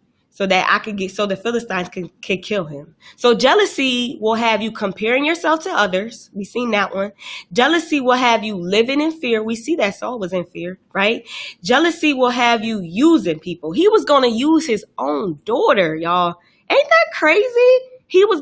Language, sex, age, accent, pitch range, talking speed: English, female, 20-39, American, 190-260 Hz, 195 wpm